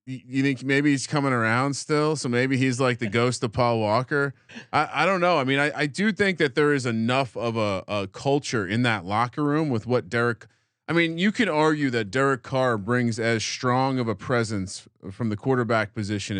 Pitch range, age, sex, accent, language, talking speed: 120-150 Hz, 30-49, male, American, English, 215 wpm